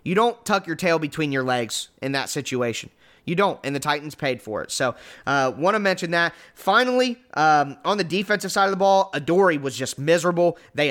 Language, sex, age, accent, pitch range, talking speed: English, male, 20-39, American, 145-185 Hz, 215 wpm